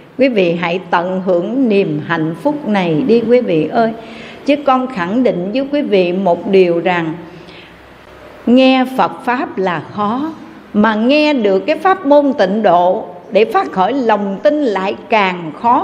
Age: 60-79